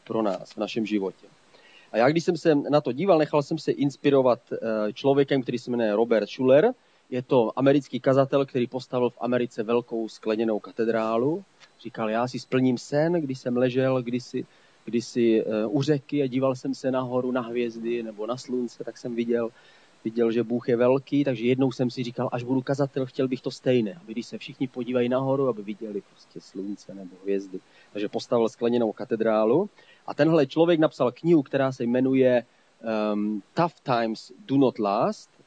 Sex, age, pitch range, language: male, 30-49, 115-135 Hz, Czech